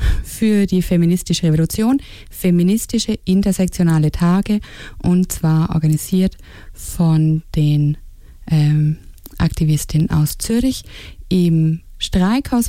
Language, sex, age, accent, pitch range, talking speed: English, female, 20-39, German, 155-195 Hz, 85 wpm